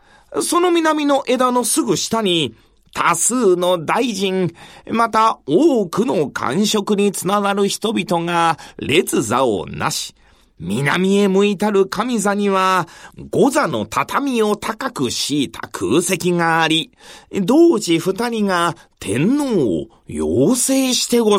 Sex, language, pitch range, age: male, Japanese, 170-255 Hz, 40-59